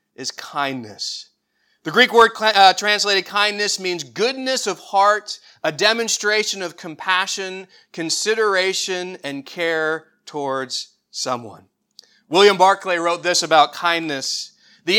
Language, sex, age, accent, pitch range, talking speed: English, male, 30-49, American, 180-235 Hz, 110 wpm